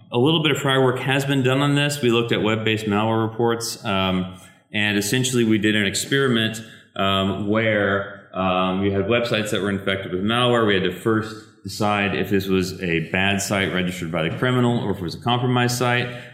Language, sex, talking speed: English, male, 210 wpm